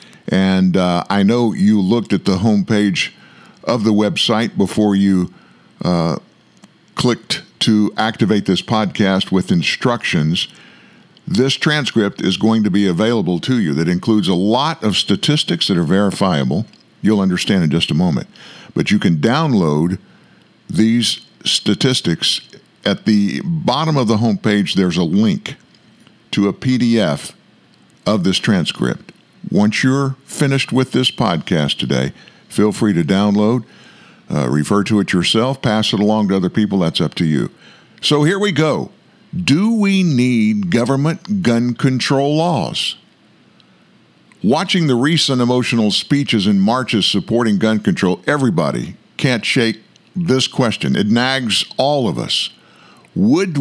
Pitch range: 100-150 Hz